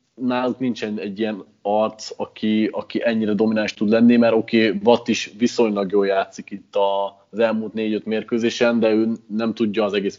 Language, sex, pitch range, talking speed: Hungarian, male, 100-120 Hz, 175 wpm